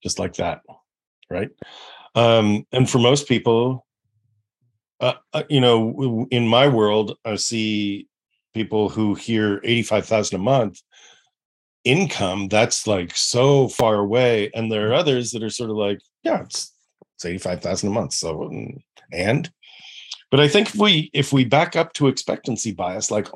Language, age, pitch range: English, 40-59, 105-130 Hz